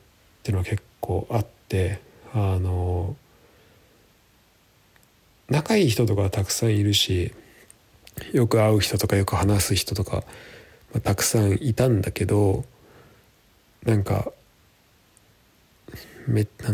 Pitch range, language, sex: 100-120 Hz, Japanese, male